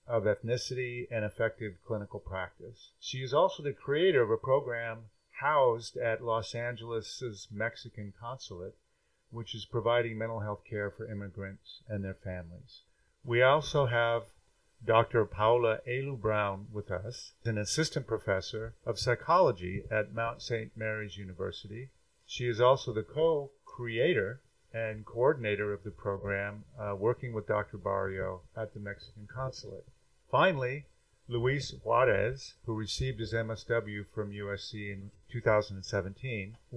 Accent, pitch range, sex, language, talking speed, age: American, 105-125 Hz, male, English, 130 wpm, 50-69